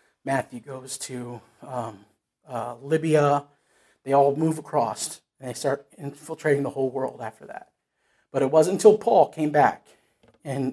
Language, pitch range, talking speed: English, 140-160 Hz, 150 wpm